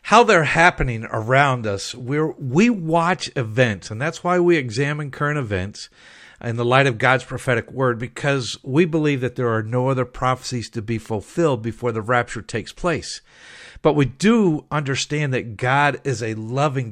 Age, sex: 50-69, male